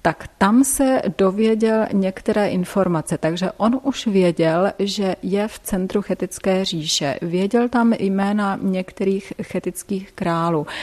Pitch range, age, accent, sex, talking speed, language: 180-215 Hz, 30-49, native, female, 120 wpm, Czech